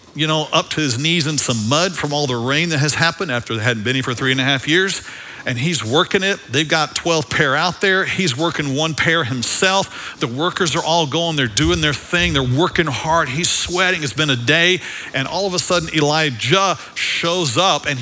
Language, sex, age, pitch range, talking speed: English, male, 50-69, 115-165 Hz, 230 wpm